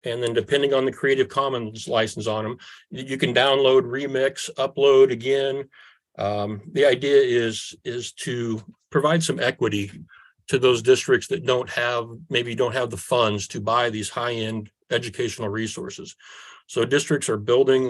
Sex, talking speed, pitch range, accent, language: male, 160 wpm, 110-140 Hz, American, English